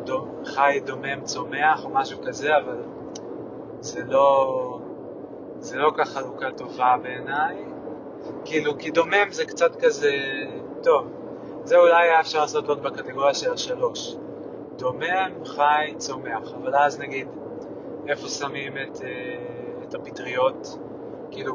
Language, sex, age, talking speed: Hebrew, male, 20-39, 120 wpm